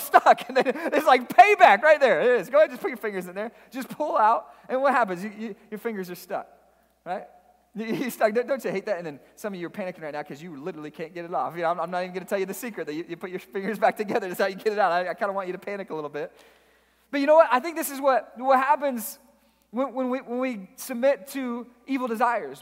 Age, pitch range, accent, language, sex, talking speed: 30-49, 185-255 Hz, American, English, male, 290 wpm